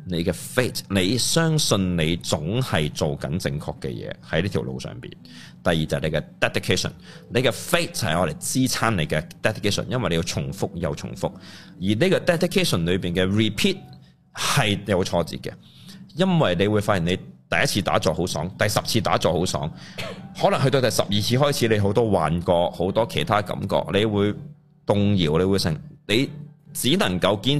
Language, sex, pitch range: Chinese, male, 90-150 Hz